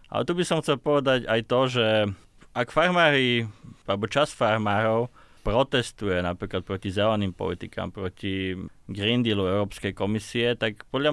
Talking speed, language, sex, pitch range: 140 wpm, Slovak, male, 105-135 Hz